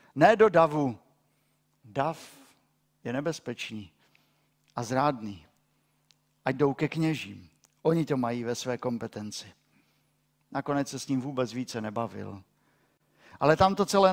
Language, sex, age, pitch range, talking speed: Czech, male, 50-69, 115-170 Hz, 125 wpm